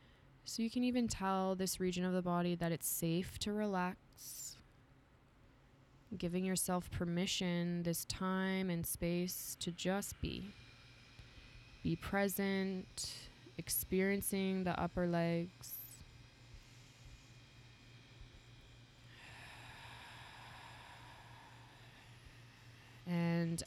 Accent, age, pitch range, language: American, 20-39, 125-190 Hz, English